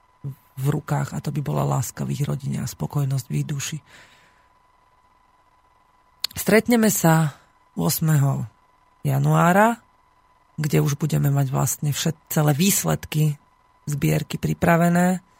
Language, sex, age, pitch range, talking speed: Slovak, female, 40-59, 140-160 Hz, 110 wpm